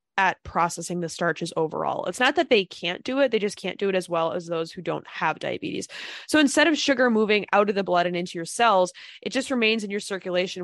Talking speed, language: 250 wpm, English